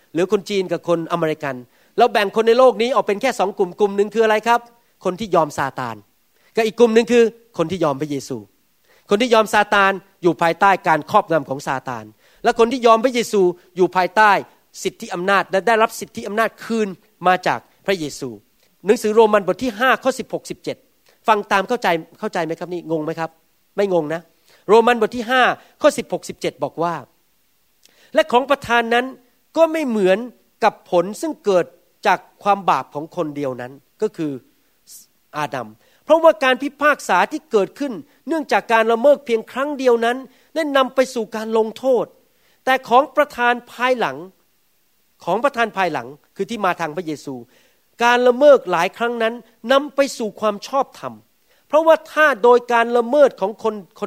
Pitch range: 180-240 Hz